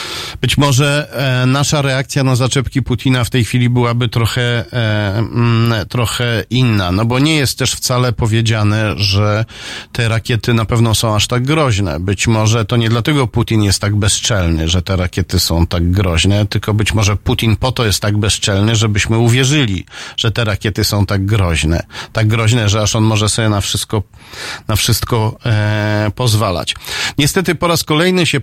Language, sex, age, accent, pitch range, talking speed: Polish, male, 40-59, native, 100-125 Hz, 175 wpm